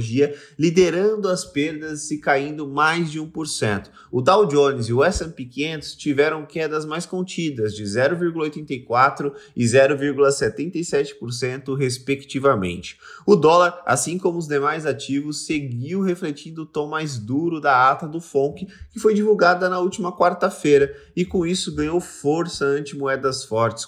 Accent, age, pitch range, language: Brazilian, 20-39, 130-165 Hz, Portuguese